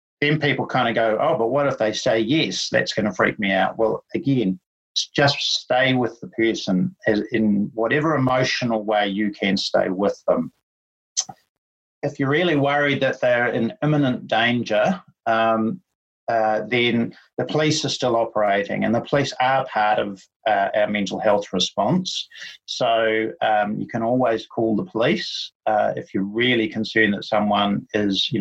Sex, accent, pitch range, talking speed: male, Australian, 105-130 Hz, 165 wpm